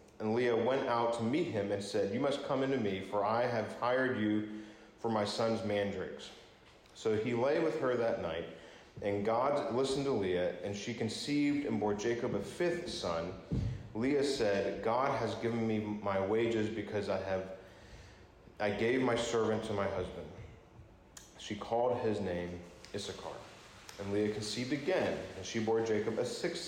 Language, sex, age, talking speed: English, male, 40-59, 170 wpm